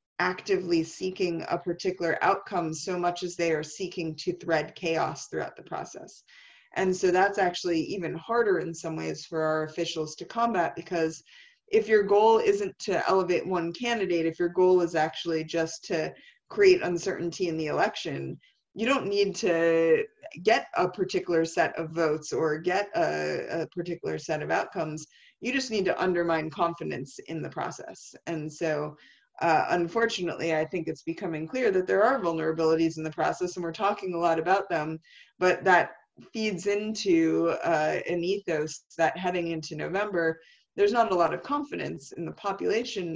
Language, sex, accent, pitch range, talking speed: English, female, American, 160-195 Hz, 170 wpm